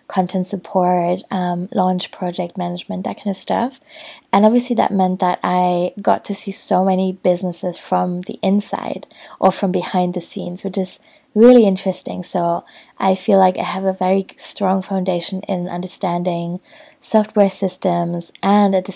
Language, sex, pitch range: English, female, 180-200 Hz